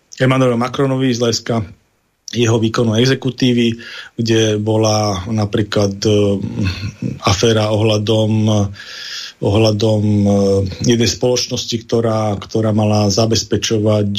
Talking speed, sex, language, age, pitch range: 95 wpm, male, Slovak, 40-59, 105-115 Hz